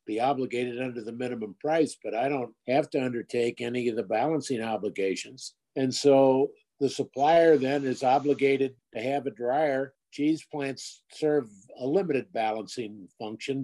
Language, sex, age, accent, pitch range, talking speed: English, male, 50-69, American, 130-150 Hz, 155 wpm